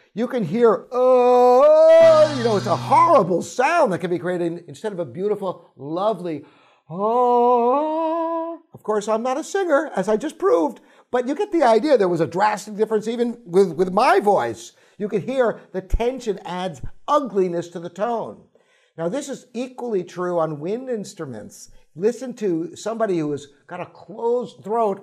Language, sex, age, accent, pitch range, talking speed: English, male, 50-69, American, 175-245 Hz, 175 wpm